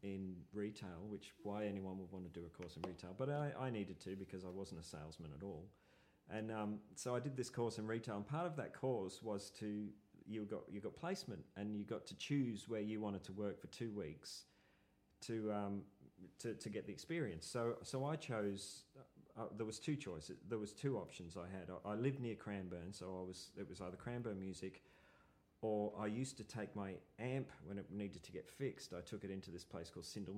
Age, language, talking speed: 40-59, English, 230 wpm